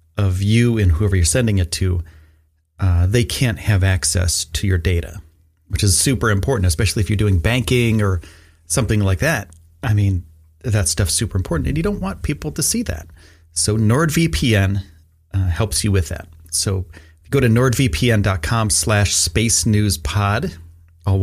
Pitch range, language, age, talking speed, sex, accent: 90-115 Hz, English, 30-49, 165 wpm, male, American